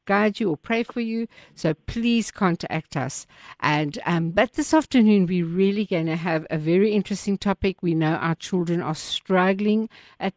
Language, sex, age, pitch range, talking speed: English, female, 60-79, 165-205 Hz, 180 wpm